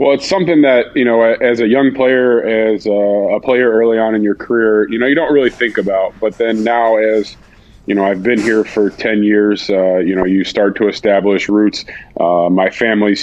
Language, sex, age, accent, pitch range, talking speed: English, male, 20-39, American, 95-105 Hz, 220 wpm